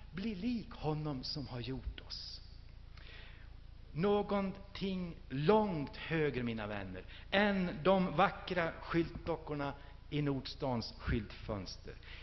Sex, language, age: male, Swedish, 60-79